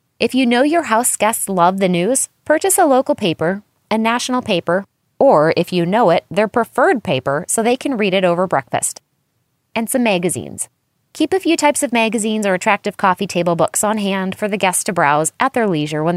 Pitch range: 170-240 Hz